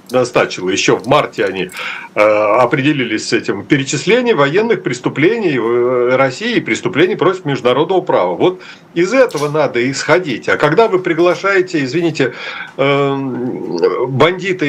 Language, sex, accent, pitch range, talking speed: Russian, male, native, 140-185 Hz, 110 wpm